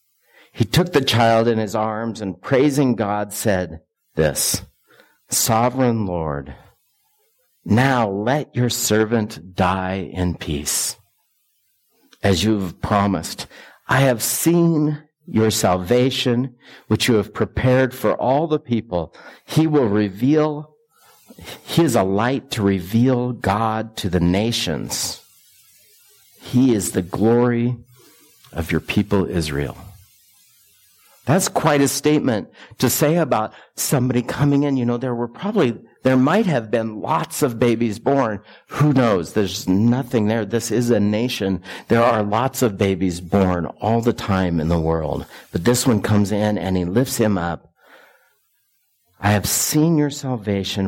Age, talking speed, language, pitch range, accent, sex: 50-69, 140 wpm, English, 100-130 Hz, American, male